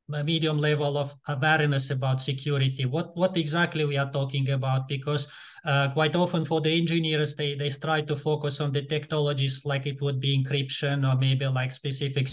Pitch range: 135-155 Hz